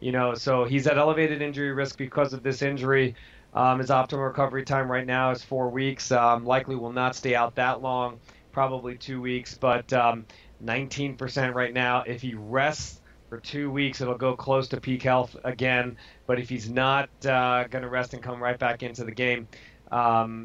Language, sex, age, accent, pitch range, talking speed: English, male, 30-49, American, 120-135 Hz, 195 wpm